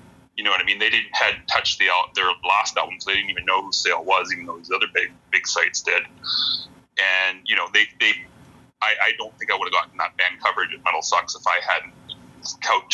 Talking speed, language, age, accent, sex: 245 wpm, English, 30-49, American, male